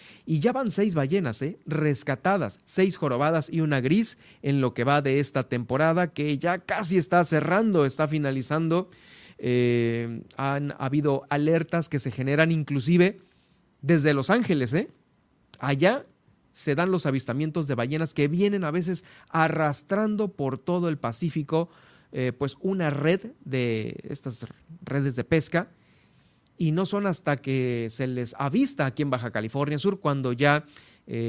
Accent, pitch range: Mexican, 130-165 Hz